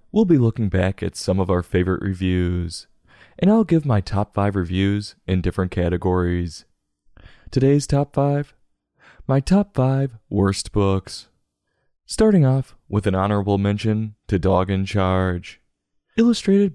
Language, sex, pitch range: English, male, 95-145 Hz